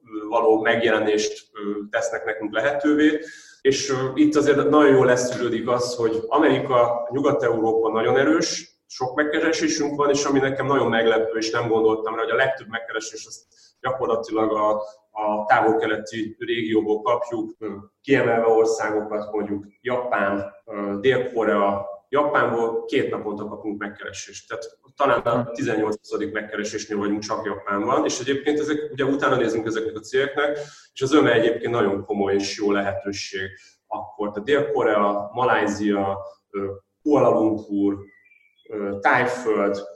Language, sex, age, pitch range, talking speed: Hungarian, male, 30-49, 105-145 Hz, 125 wpm